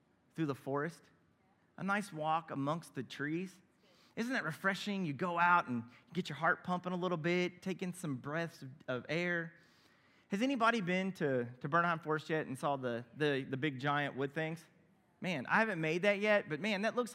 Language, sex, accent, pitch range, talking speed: English, male, American, 150-220 Hz, 195 wpm